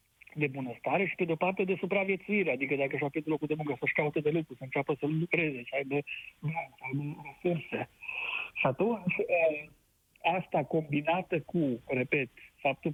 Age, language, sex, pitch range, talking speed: 60-79, Romanian, male, 140-175 Hz, 175 wpm